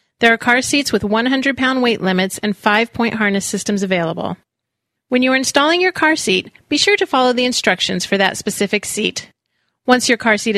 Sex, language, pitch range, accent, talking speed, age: female, English, 200-265 Hz, American, 195 wpm, 30-49